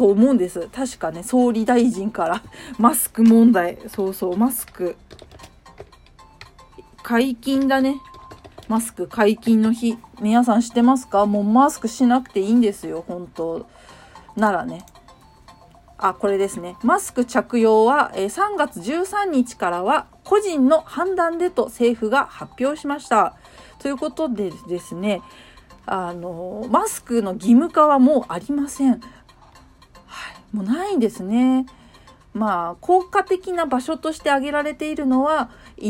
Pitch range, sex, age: 205-280 Hz, female, 40-59